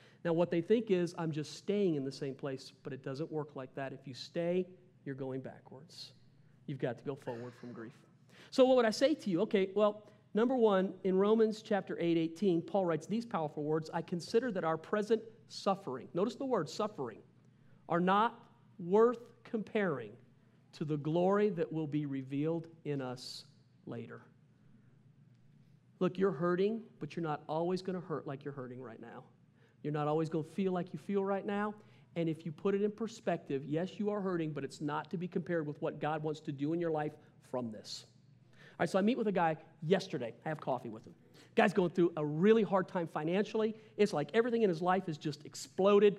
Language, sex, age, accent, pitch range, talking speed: English, male, 40-59, American, 150-210 Hz, 210 wpm